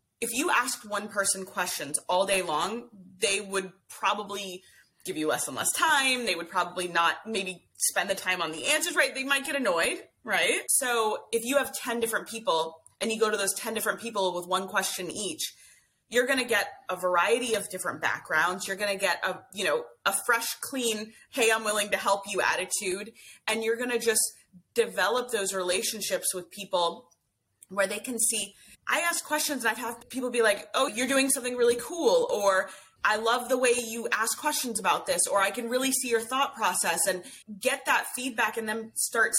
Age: 30-49